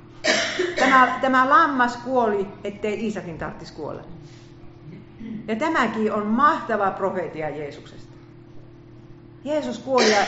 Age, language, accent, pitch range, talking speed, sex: 50-69, Finnish, native, 160-235 Hz, 100 wpm, female